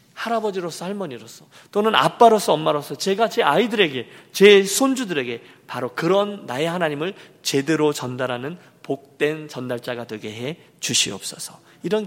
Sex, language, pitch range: male, Korean, 140-200 Hz